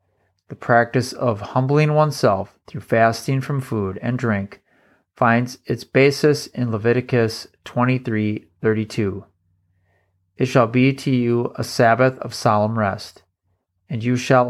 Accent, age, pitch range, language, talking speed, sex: American, 30-49, 110-130 Hz, English, 125 wpm, male